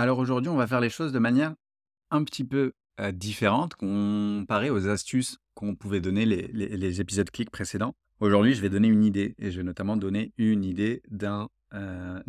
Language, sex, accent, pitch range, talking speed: French, male, French, 95-115 Hz, 200 wpm